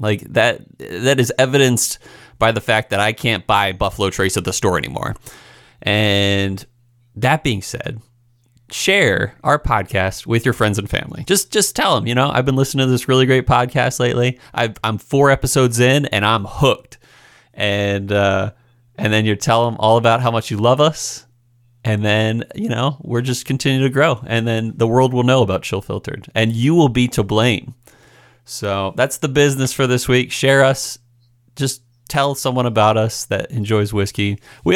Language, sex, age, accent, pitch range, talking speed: English, male, 30-49, American, 110-140 Hz, 190 wpm